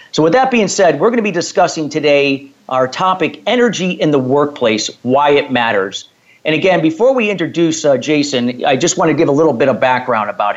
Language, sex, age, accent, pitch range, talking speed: English, male, 50-69, American, 130-170 Hz, 215 wpm